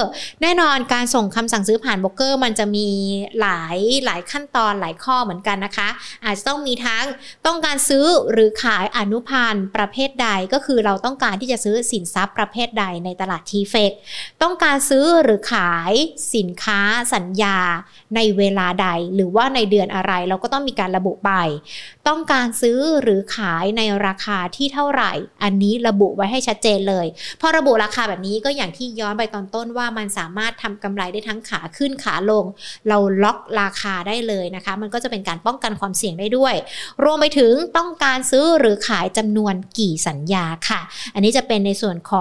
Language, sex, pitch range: Thai, female, 200-255 Hz